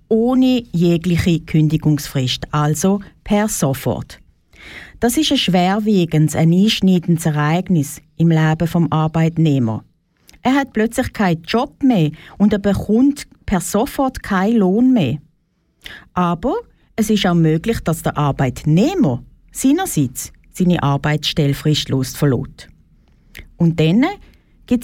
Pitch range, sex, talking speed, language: 155-235 Hz, female, 110 wpm, German